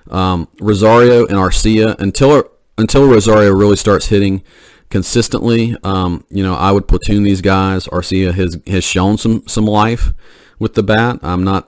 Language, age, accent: English, 40-59, American